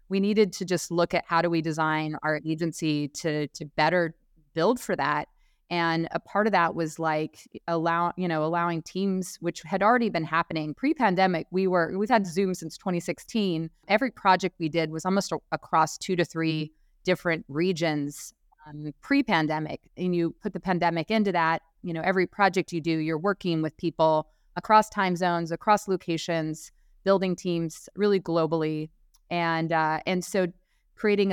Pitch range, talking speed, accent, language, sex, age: 160-185 Hz, 170 wpm, American, English, female, 30-49